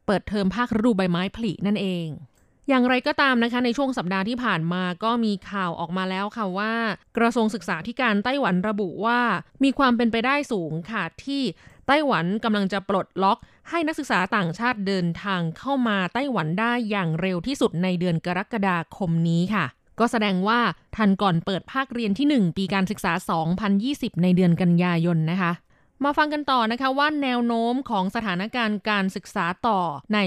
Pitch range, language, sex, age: 185-240 Hz, Thai, female, 20-39